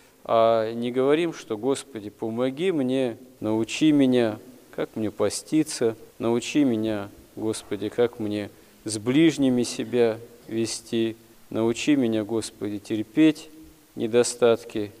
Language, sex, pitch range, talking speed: Russian, male, 110-135 Hz, 105 wpm